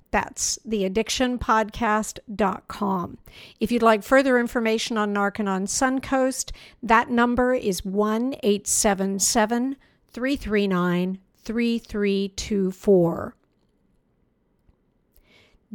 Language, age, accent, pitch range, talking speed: English, 50-69, American, 195-235 Hz, 55 wpm